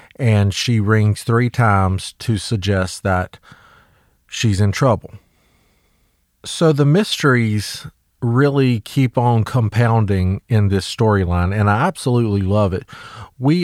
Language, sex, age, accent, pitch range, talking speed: English, male, 40-59, American, 100-125 Hz, 120 wpm